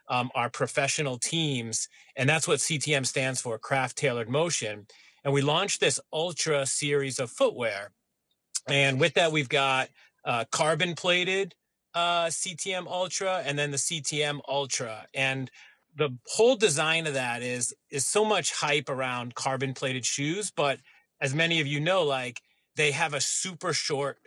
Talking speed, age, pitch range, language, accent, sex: 155 wpm, 40-59, 130-155 Hz, English, American, male